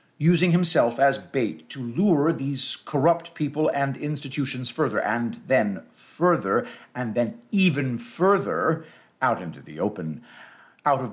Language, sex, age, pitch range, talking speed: English, male, 50-69, 115-155 Hz, 135 wpm